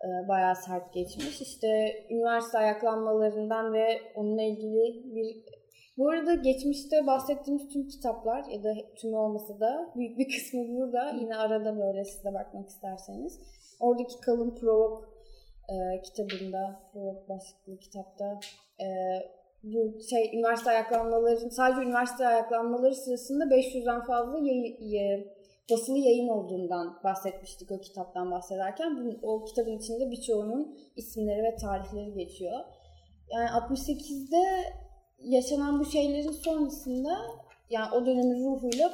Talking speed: 115 wpm